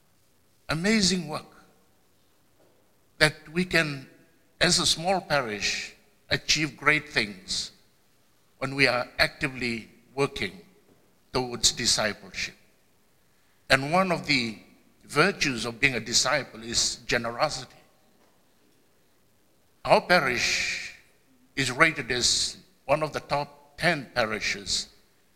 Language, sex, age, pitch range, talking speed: English, male, 60-79, 130-170 Hz, 95 wpm